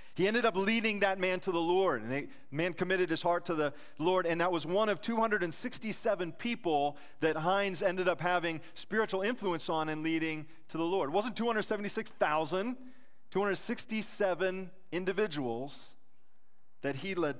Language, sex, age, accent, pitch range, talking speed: English, male, 40-59, American, 165-210 Hz, 160 wpm